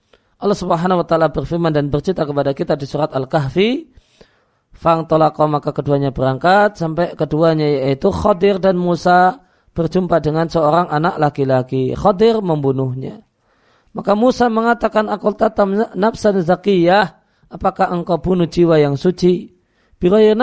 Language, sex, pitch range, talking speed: Indonesian, male, 150-190 Hz, 120 wpm